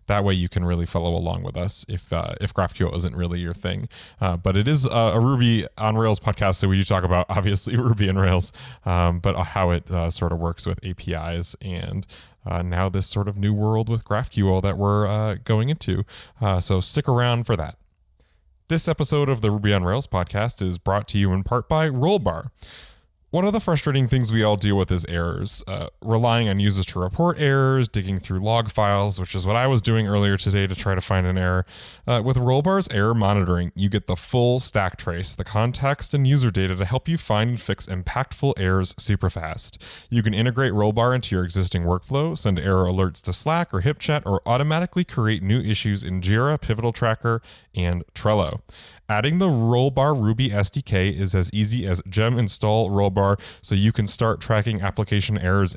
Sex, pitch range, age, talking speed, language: male, 95-120 Hz, 20-39, 205 wpm, English